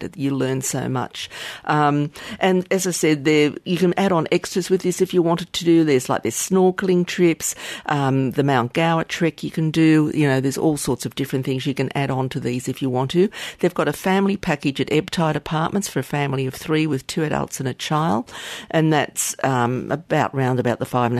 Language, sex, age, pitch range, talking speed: English, female, 50-69, 130-165 Hz, 230 wpm